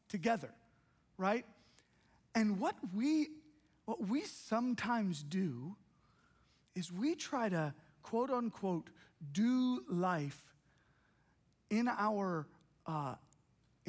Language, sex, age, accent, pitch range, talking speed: English, male, 40-59, American, 190-240 Hz, 85 wpm